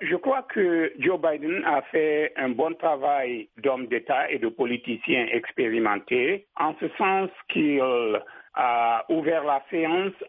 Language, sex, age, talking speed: French, male, 60-79, 140 wpm